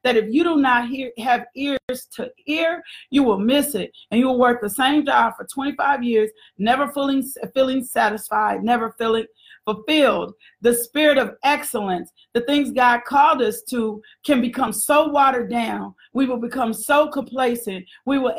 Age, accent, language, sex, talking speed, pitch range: 40-59, American, English, female, 170 wpm, 225-270 Hz